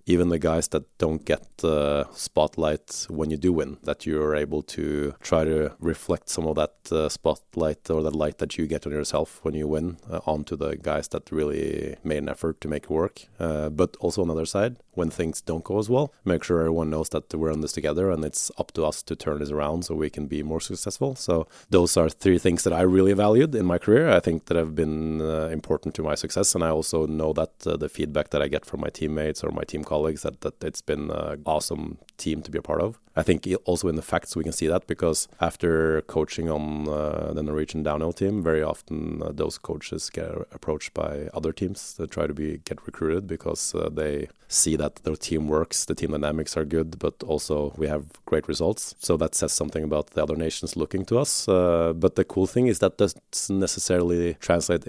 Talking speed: 235 wpm